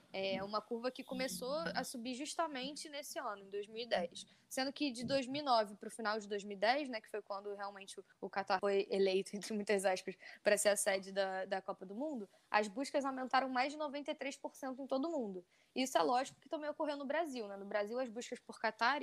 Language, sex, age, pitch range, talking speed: Portuguese, female, 10-29, 210-270 Hz, 210 wpm